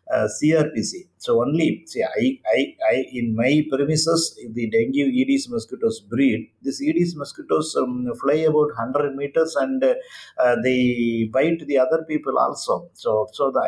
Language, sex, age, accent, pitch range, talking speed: English, male, 50-69, Indian, 115-150 Hz, 155 wpm